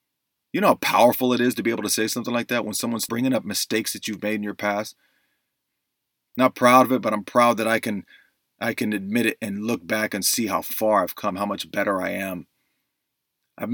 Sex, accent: male, American